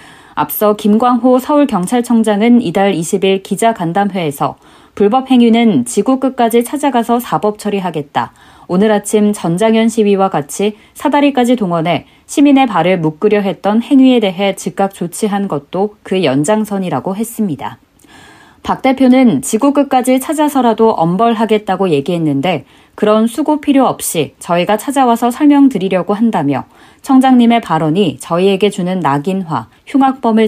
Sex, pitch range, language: female, 175-235 Hz, Korean